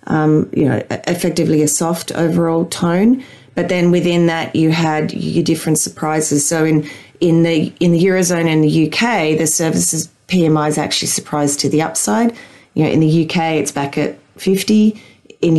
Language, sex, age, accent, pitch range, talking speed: English, female, 30-49, Australian, 155-185 Hz, 175 wpm